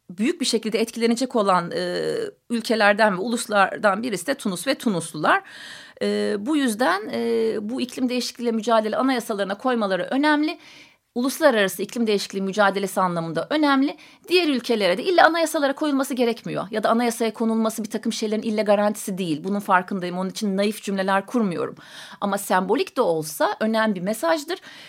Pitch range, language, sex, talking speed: 210-280 Hz, Turkish, female, 150 wpm